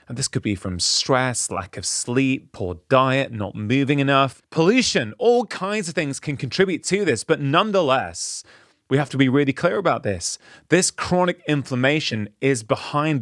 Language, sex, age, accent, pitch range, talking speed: English, male, 30-49, British, 115-155 Hz, 170 wpm